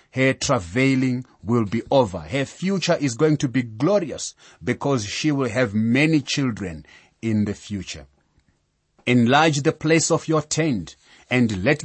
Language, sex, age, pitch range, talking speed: English, male, 30-49, 110-155 Hz, 145 wpm